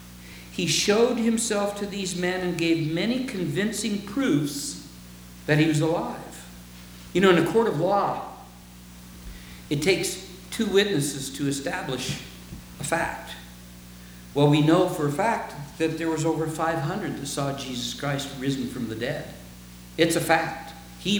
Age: 50-69